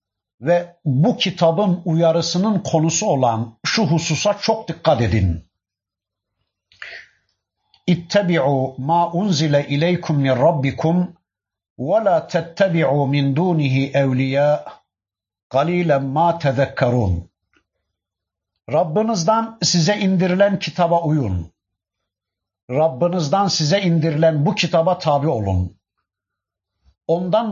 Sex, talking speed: male, 70 wpm